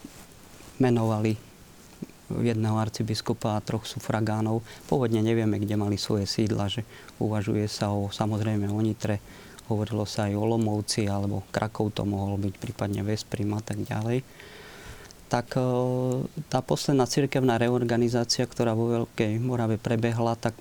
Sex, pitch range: male, 105-120 Hz